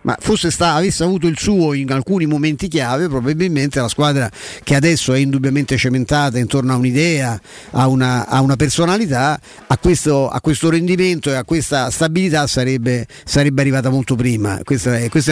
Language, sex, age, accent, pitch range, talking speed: Italian, male, 50-69, native, 125-155 Hz, 155 wpm